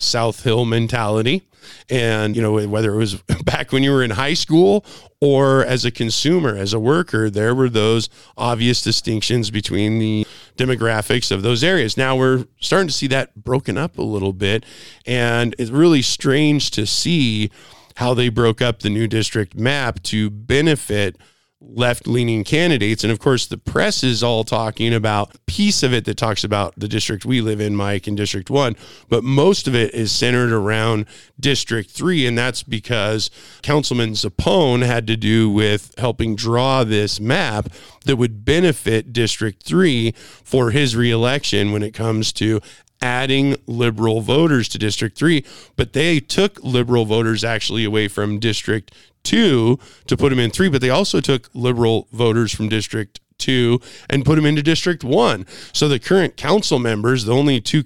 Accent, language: American, English